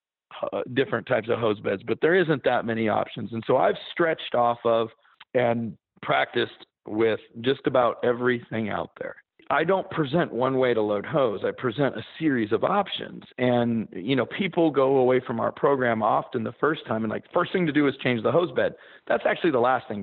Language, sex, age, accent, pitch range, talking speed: English, male, 40-59, American, 115-155 Hz, 205 wpm